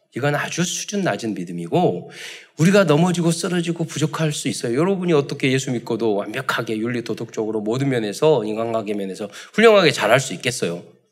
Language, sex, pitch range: Korean, male, 115-180 Hz